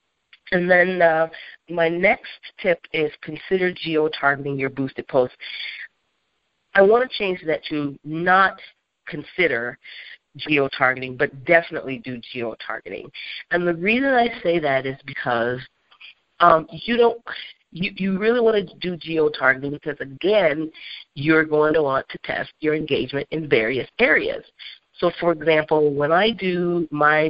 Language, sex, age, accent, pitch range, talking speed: English, female, 40-59, American, 150-185 Hz, 140 wpm